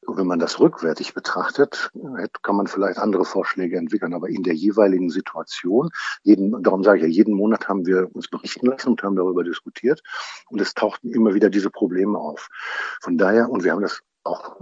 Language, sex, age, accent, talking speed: German, male, 50-69, German, 195 wpm